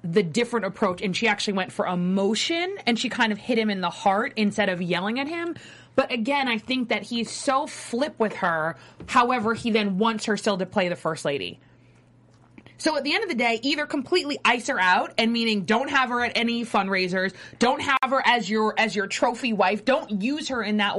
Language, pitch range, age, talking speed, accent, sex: English, 205-255 Hz, 20-39, 225 wpm, American, female